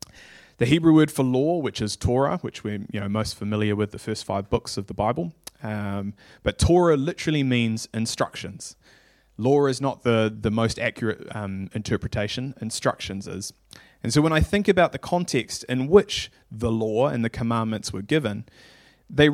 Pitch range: 105-135 Hz